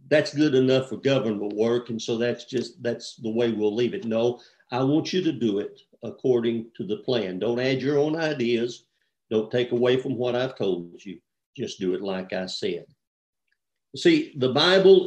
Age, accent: 50-69, American